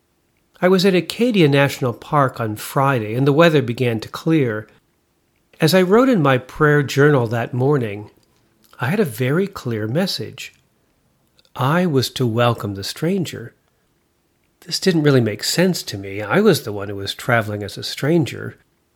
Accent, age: American, 50-69